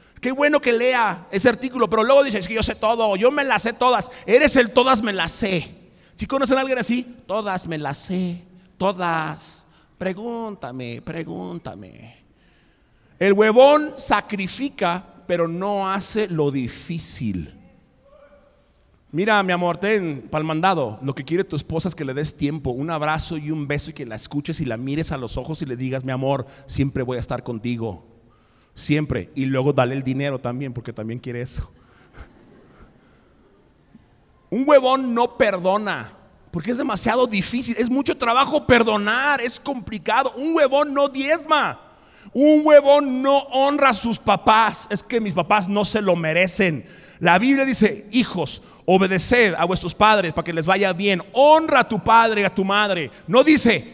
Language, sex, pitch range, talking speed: Spanish, male, 155-245 Hz, 170 wpm